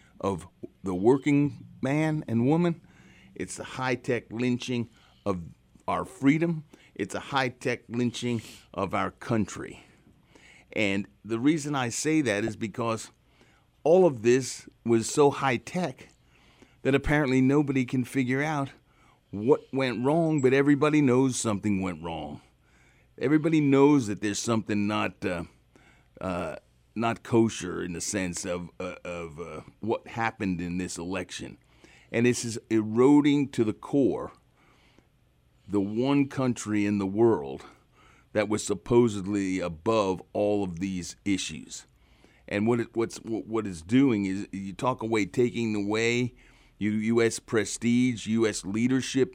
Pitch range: 100-130 Hz